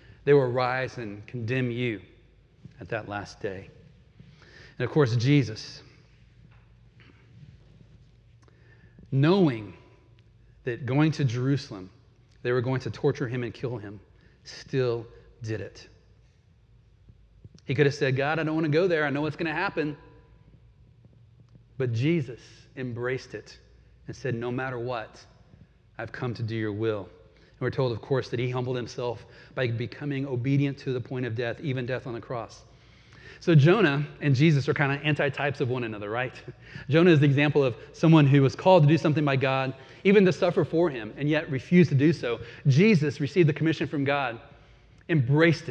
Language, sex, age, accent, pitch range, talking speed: English, male, 40-59, American, 115-145 Hz, 170 wpm